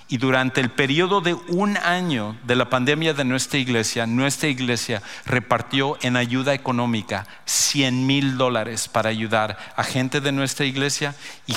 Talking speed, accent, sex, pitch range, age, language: 155 wpm, Mexican, male, 115-140 Hz, 50-69, English